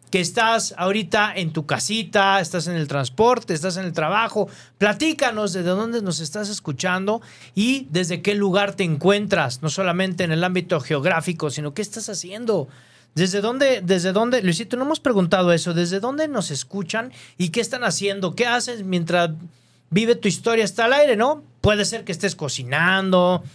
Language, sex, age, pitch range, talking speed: Spanish, male, 40-59, 155-200 Hz, 175 wpm